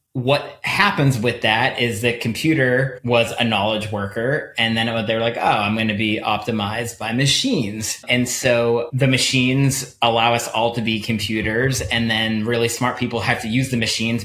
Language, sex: English, male